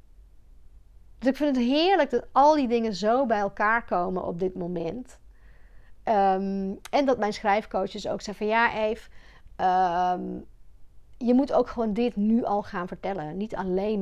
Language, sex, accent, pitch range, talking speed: Dutch, female, Dutch, 195-235 Hz, 165 wpm